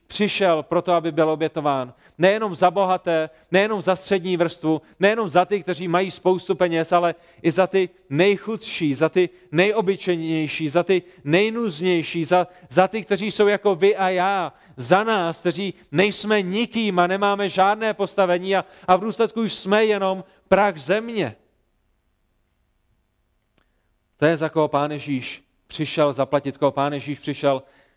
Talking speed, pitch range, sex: 145 wpm, 145-185 Hz, male